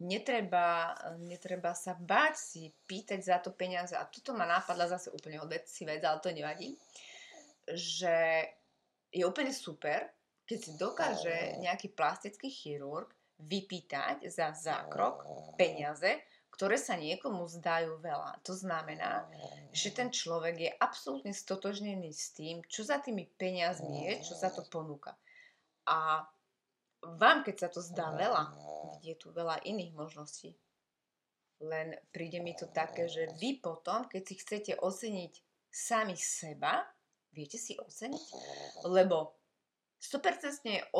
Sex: female